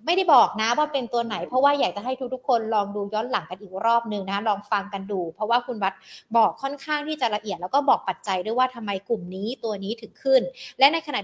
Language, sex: Thai, female